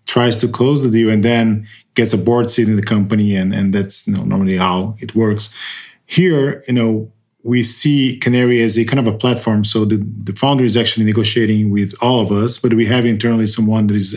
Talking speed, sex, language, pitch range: 225 wpm, male, English, 105-125 Hz